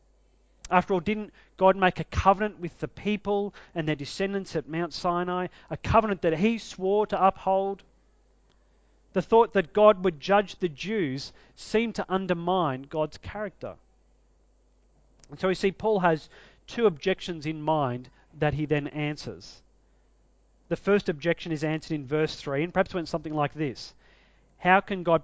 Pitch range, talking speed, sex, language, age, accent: 140-190 Hz, 160 wpm, male, English, 40-59, Australian